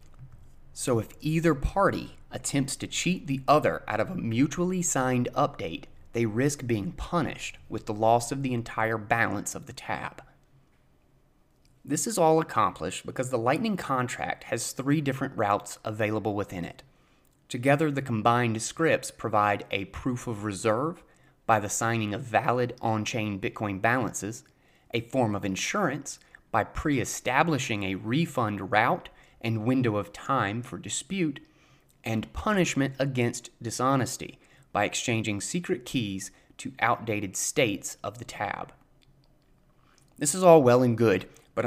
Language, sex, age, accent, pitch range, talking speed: English, male, 30-49, American, 105-135 Hz, 140 wpm